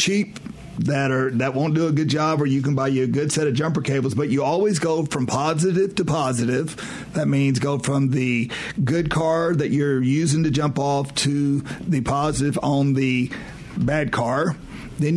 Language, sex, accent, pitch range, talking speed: English, male, American, 135-160 Hz, 195 wpm